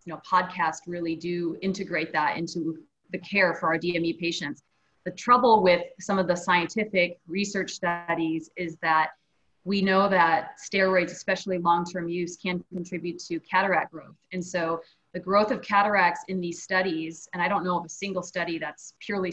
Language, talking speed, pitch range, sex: English, 175 wpm, 170-185 Hz, female